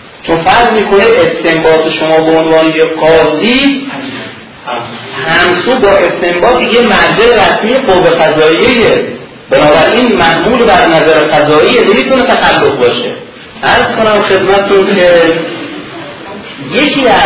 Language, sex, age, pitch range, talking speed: Persian, male, 40-59, 135-190 Hz, 110 wpm